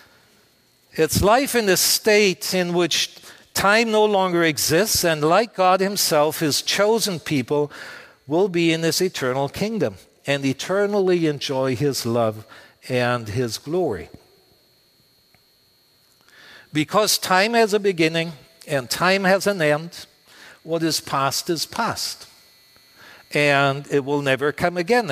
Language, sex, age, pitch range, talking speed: English, male, 60-79, 140-190 Hz, 125 wpm